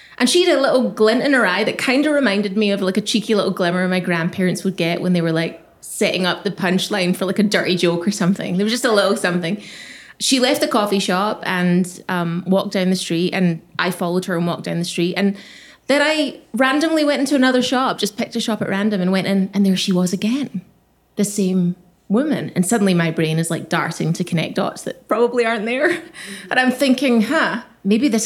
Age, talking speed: 20-39, 235 wpm